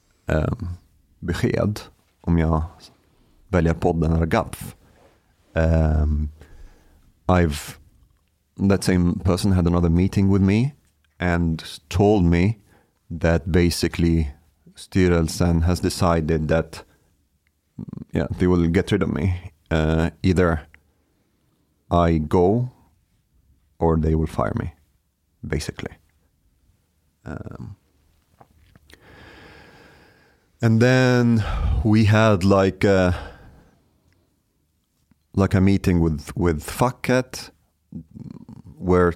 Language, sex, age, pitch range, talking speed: Swedish, male, 40-59, 80-95 Hz, 90 wpm